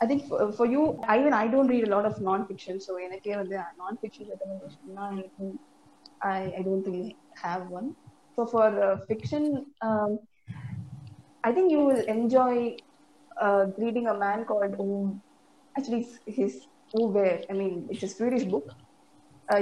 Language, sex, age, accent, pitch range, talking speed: Tamil, female, 20-39, native, 195-235 Hz, 195 wpm